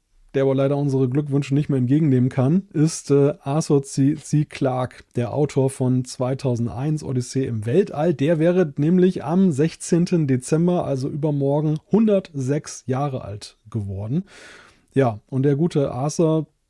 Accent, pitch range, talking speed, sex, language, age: German, 130-160 Hz, 135 wpm, male, German, 30-49